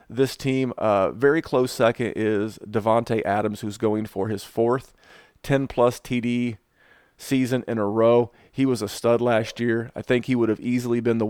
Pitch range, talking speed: 105-125 Hz, 180 wpm